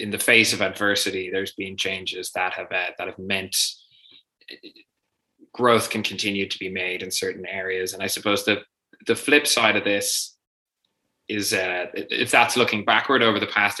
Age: 20-39